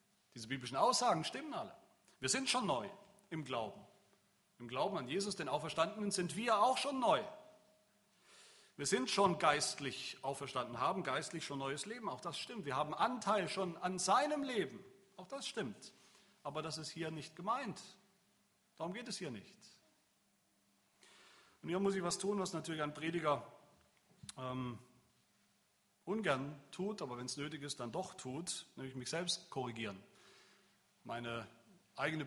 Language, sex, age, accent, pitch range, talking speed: German, male, 40-59, German, 130-195 Hz, 155 wpm